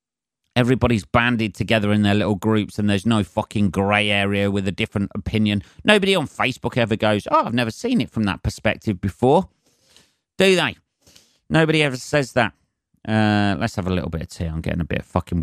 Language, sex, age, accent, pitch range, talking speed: English, male, 40-59, British, 90-120 Hz, 195 wpm